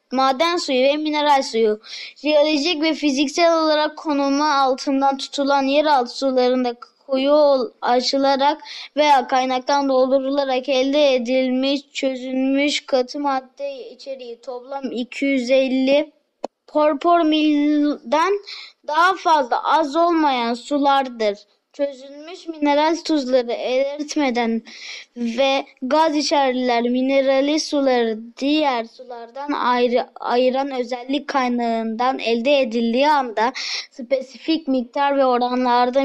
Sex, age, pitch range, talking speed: female, 20-39, 255-295 Hz, 95 wpm